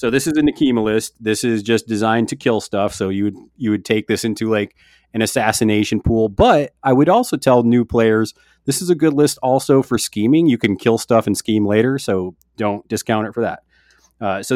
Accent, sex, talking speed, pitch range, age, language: American, male, 225 wpm, 100-130 Hz, 30-49, English